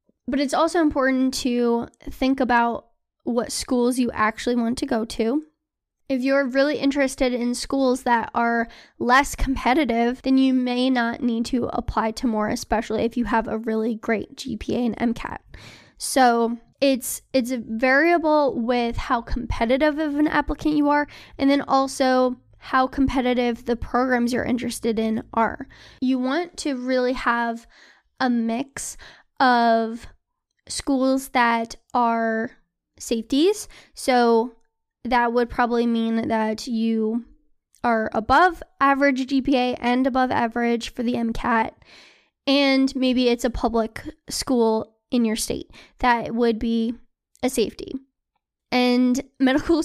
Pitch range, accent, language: 235-270 Hz, American, English